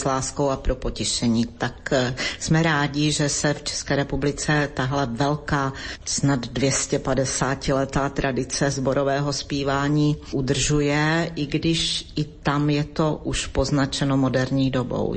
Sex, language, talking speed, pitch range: female, Slovak, 125 wpm, 130-150 Hz